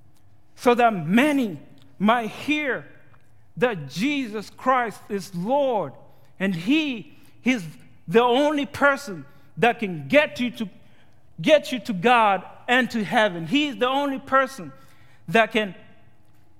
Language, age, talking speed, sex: English, 50-69, 125 wpm, male